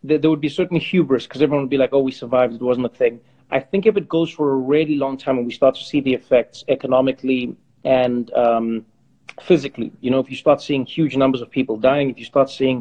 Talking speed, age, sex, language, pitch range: 250 wpm, 30-49, male, English, 130-145 Hz